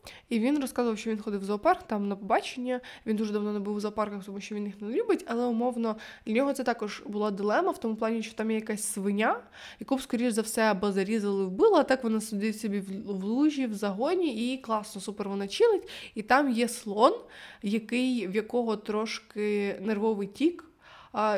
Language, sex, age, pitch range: Ukrainian, female, 20-39, 205-230 Hz